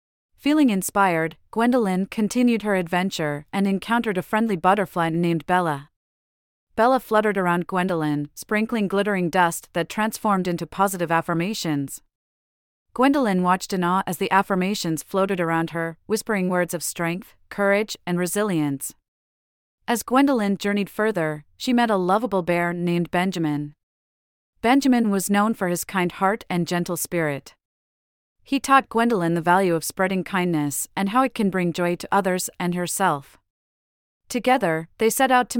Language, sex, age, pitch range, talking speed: English, female, 30-49, 165-210 Hz, 145 wpm